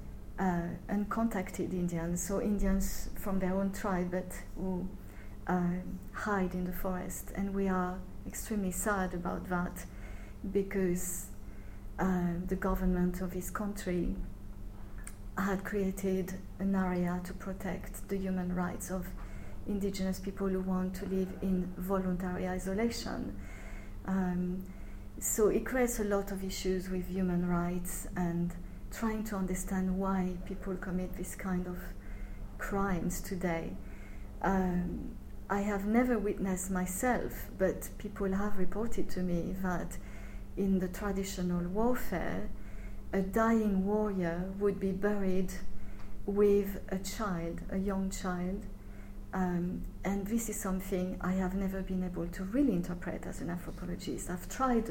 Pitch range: 175-195 Hz